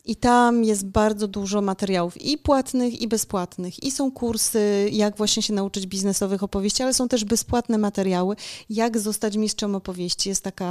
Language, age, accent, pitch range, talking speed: Polish, 30-49, native, 195-225 Hz, 170 wpm